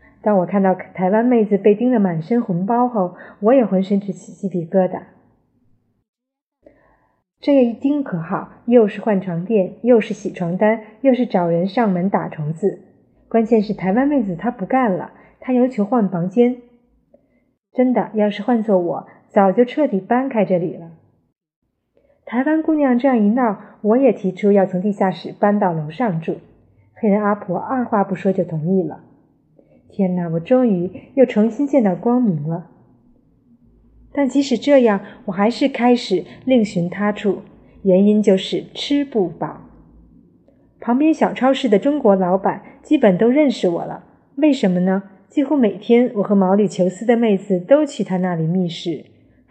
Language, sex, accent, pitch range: Chinese, female, native, 185-245 Hz